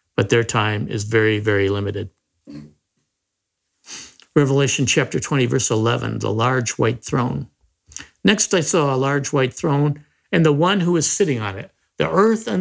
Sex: male